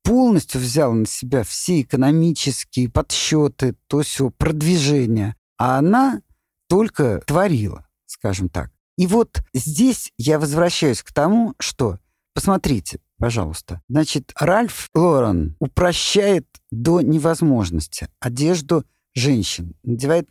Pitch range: 105-155 Hz